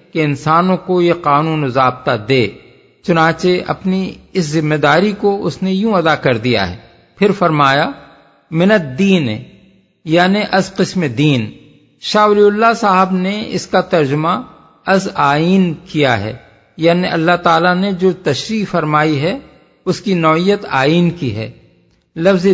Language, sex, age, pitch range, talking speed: Urdu, male, 50-69, 155-195 Hz, 120 wpm